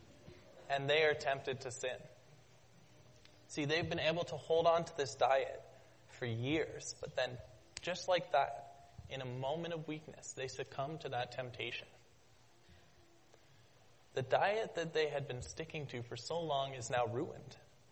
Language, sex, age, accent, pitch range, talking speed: English, male, 20-39, American, 125-165 Hz, 155 wpm